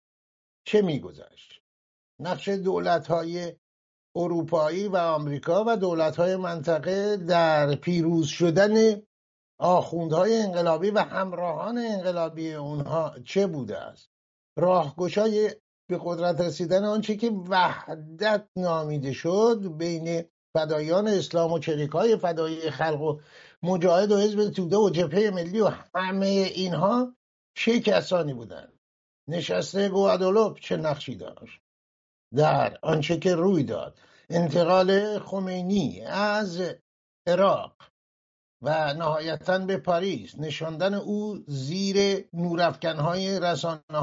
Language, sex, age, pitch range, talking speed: English, male, 60-79, 155-195 Hz, 110 wpm